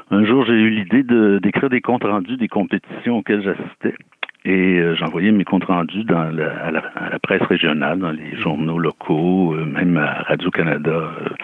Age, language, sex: 60-79, French, male